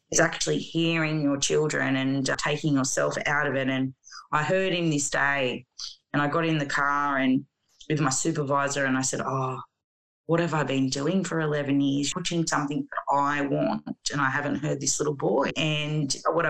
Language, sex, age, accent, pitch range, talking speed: English, female, 20-39, Australian, 135-155 Hz, 195 wpm